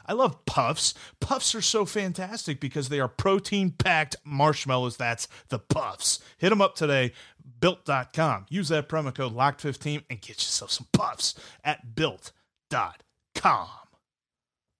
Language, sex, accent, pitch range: English, male, American, 120-165 Hz